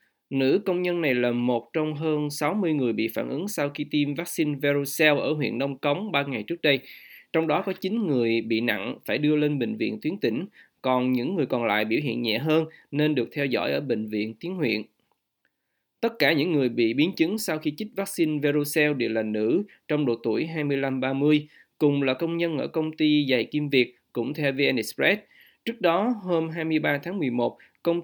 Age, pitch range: 20-39, 125-160 Hz